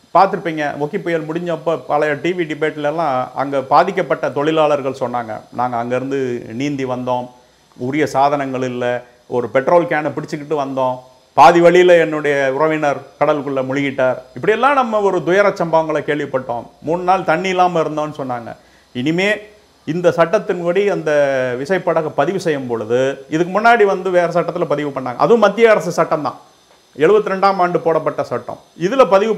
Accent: native